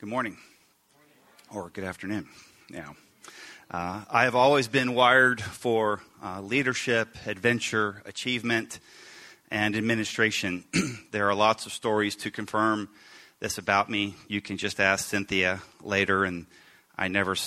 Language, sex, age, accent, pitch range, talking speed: English, male, 30-49, American, 100-115 Hz, 135 wpm